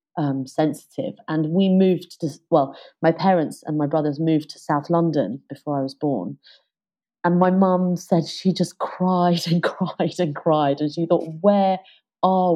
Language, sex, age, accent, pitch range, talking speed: English, female, 30-49, British, 160-195 Hz, 170 wpm